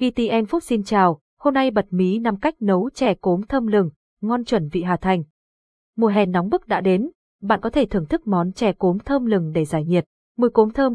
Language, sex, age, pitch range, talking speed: Vietnamese, female, 20-39, 185-235 Hz, 230 wpm